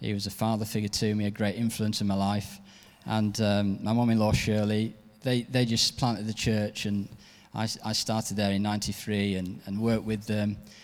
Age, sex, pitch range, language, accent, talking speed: 20-39, male, 105-120 Hz, English, British, 200 wpm